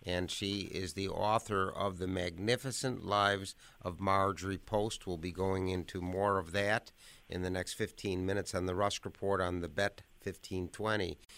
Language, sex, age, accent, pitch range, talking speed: English, male, 50-69, American, 95-110 Hz, 170 wpm